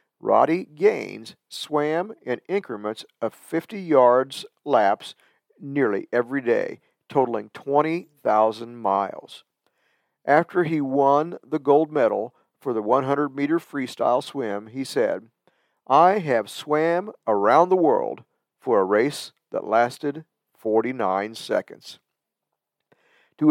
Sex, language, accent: male, English, American